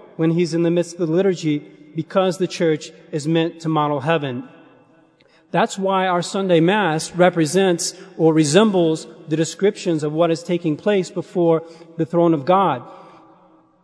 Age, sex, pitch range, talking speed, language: 40-59, male, 160-190 Hz, 155 wpm, English